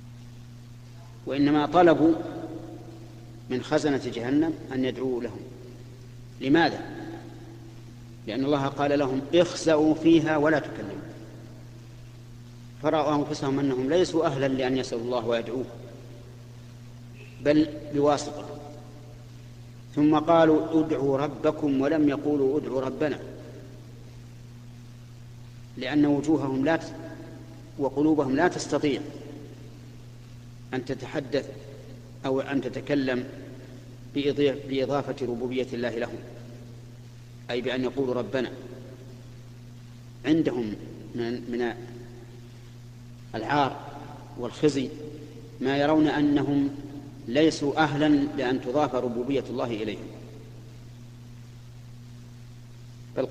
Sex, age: male, 50-69